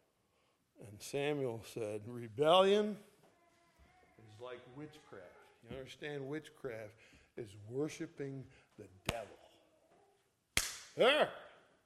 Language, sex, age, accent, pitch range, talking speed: English, male, 50-69, American, 125-190 Hz, 75 wpm